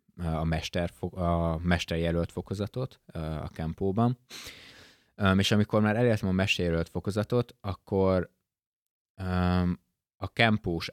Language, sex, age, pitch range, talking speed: Hungarian, male, 20-39, 85-100 Hz, 95 wpm